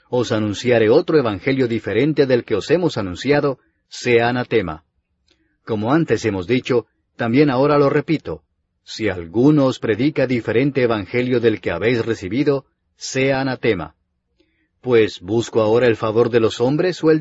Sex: male